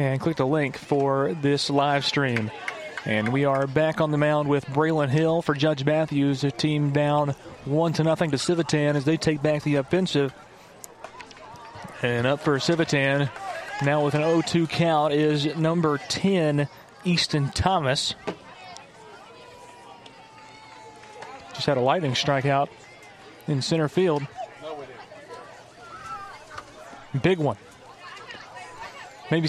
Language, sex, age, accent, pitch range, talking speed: English, male, 30-49, American, 140-160 Hz, 120 wpm